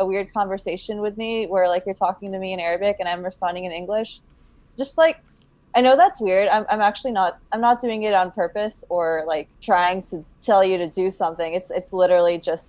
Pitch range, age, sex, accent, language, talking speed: 170-215 Hz, 20-39, female, American, English, 220 wpm